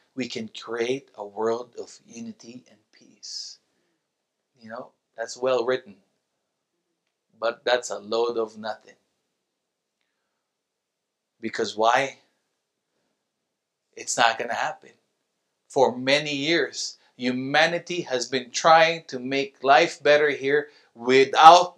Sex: male